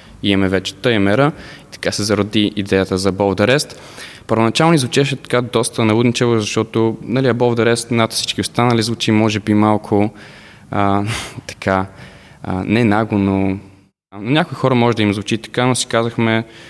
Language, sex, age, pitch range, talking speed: Bulgarian, male, 20-39, 100-120 Hz, 145 wpm